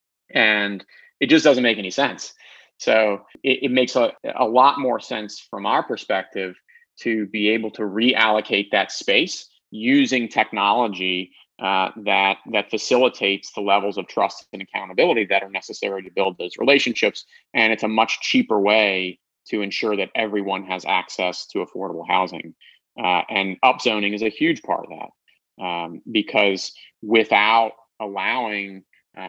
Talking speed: 150 wpm